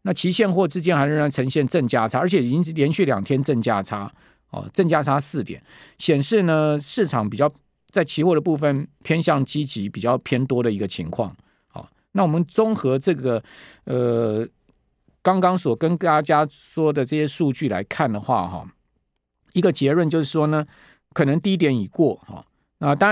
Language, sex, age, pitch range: Chinese, male, 50-69, 125-170 Hz